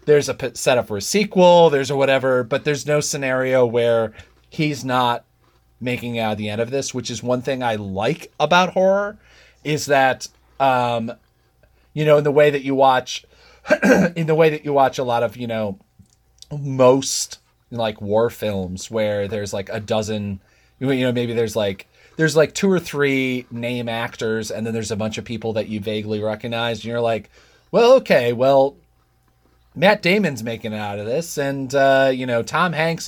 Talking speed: 195 wpm